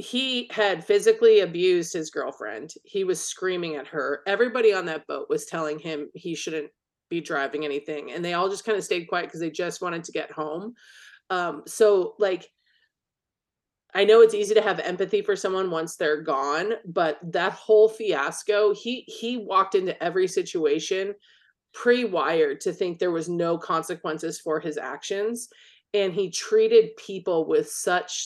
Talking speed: 170 wpm